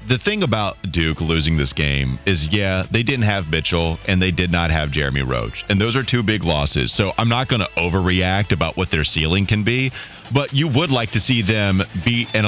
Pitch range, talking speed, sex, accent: 90-130 Hz, 225 wpm, male, American